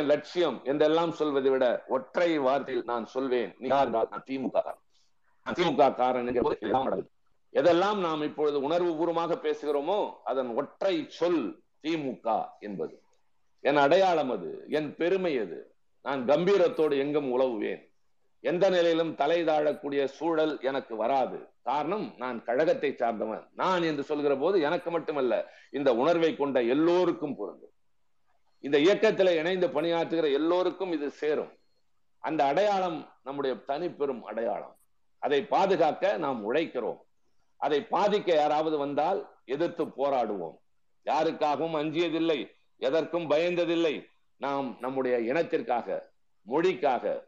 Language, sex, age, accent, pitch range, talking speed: Tamil, male, 50-69, native, 140-185 Hz, 95 wpm